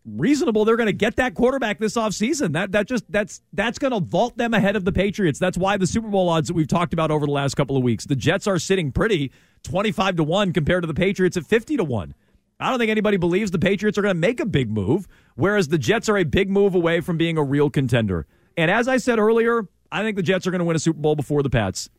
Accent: American